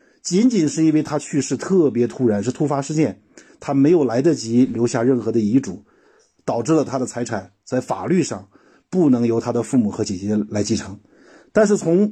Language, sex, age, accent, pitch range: Chinese, male, 50-69, native, 115-160 Hz